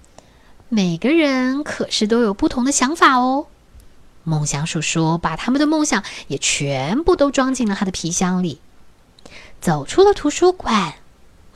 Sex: female